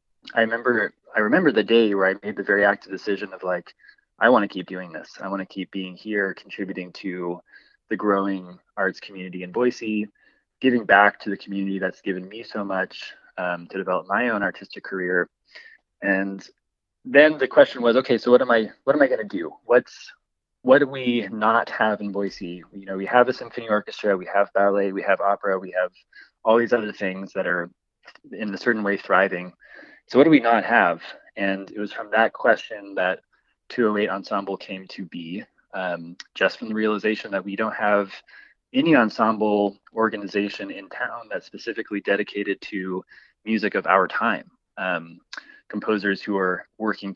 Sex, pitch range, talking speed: male, 95-105 Hz, 185 wpm